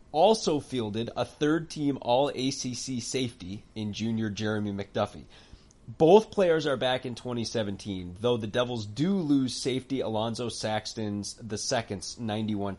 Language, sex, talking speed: English, male, 135 wpm